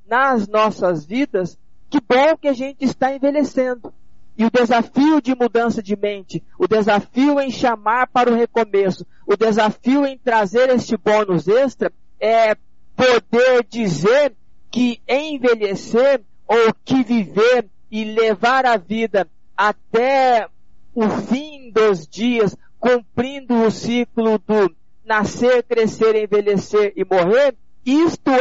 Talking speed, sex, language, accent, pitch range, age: 120 wpm, male, Portuguese, Brazilian, 220-275 Hz, 50-69